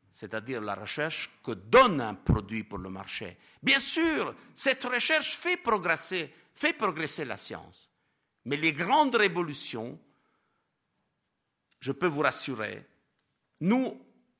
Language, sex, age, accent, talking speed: French, male, 50-69, Italian, 115 wpm